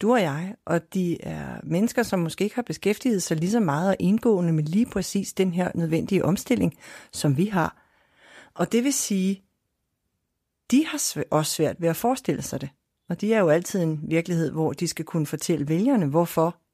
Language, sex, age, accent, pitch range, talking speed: Danish, female, 60-79, native, 165-220 Hz, 195 wpm